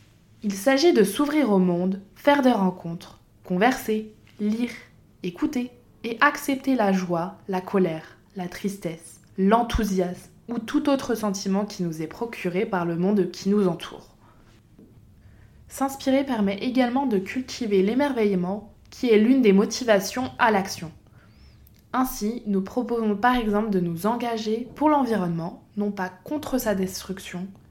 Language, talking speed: French, 135 wpm